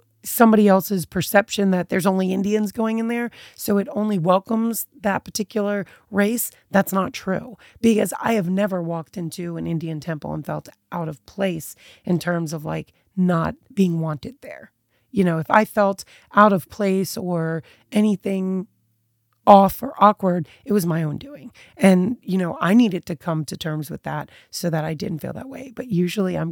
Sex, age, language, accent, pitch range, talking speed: female, 30-49, English, American, 175-215 Hz, 180 wpm